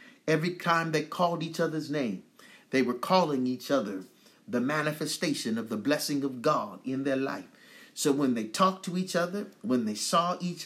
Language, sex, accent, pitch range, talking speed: English, male, American, 145-220 Hz, 185 wpm